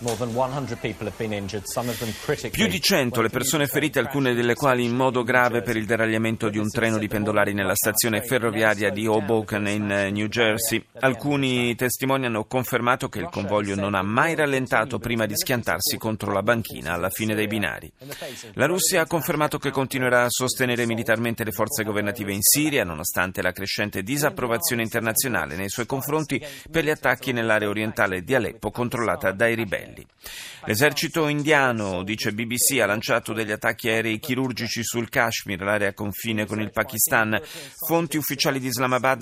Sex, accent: male, native